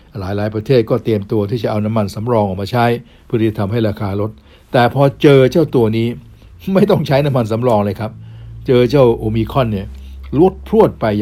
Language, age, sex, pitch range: Thai, 60-79, male, 100-125 Hz